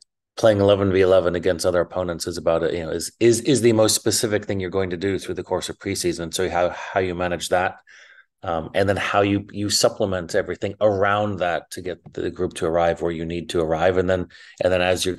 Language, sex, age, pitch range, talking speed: English, male, 30-49, 85-100 Hz, 240 wpm